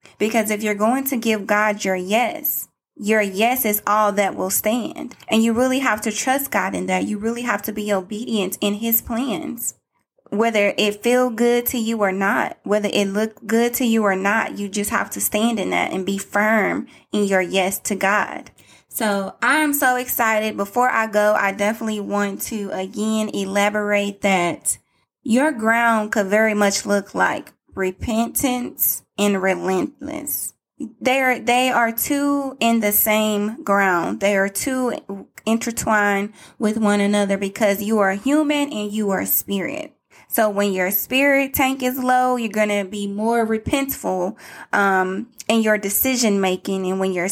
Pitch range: 200-245 Hz